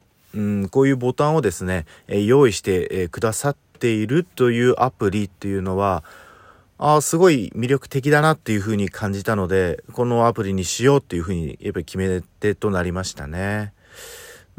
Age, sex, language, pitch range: 40-59, male, Japanese, 95-125 Hz